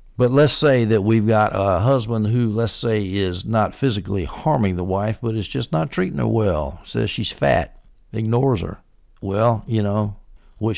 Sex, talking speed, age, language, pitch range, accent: male, 185 wpm, 60-79, English, 100-125 Hz, American